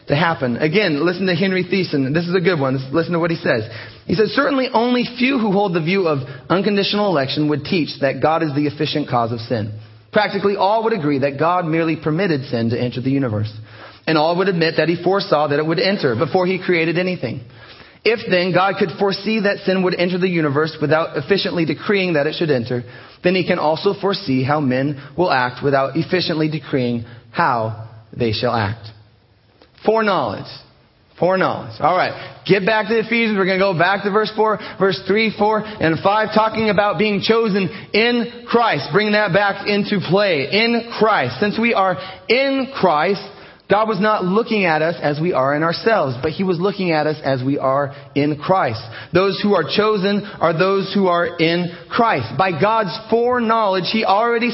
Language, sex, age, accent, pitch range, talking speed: English, male, 30-49, American, 145-205 Hz, 195 wpm